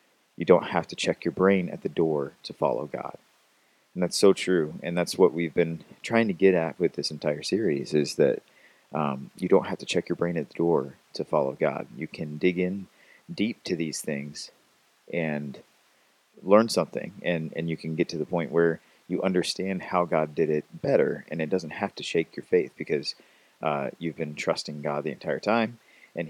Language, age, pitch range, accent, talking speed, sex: English, 30-49, 75-95 Hz, American, 210 wpm, male